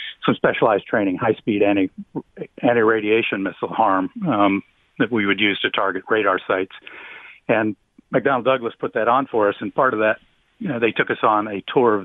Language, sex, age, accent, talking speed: English, male, 50-69, American, 200 wpm